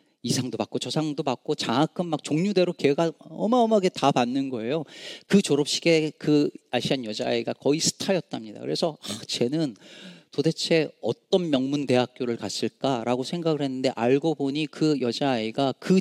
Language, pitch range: Korean, 135-200 Hz